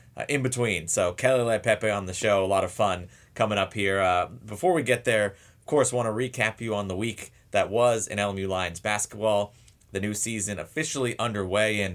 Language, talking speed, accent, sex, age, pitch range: English, 215 wpm, American, male, 30-49, 95-115 Hz